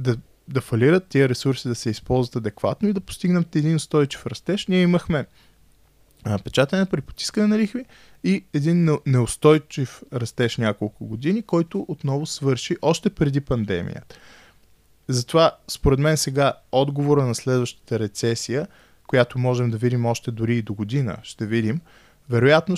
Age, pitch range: 20-39, 120-165 Hz